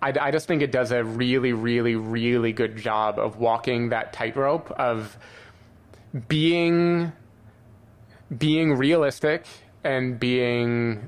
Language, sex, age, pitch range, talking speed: English, male, 20-39, 110-125 Hz, 120 wpm